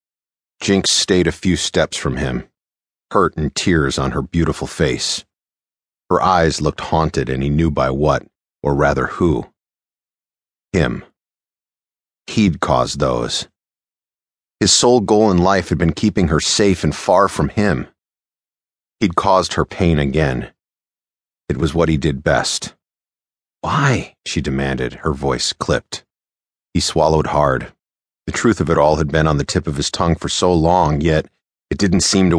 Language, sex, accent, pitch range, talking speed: English, male, American, 70-85 Hz, 155 wpm